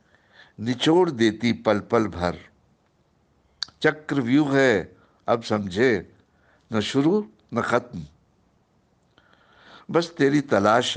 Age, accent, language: 60-79, native, Hindi